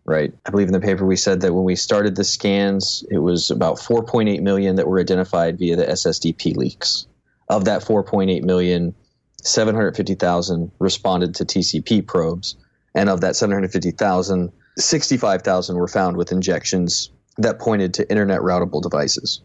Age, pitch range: 20-39, 90-100 Hz